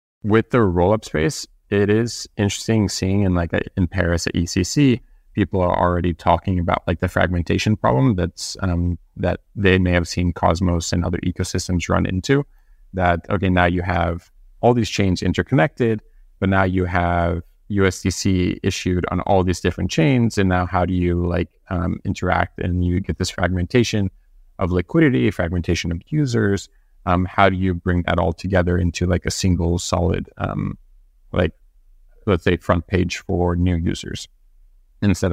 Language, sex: English, male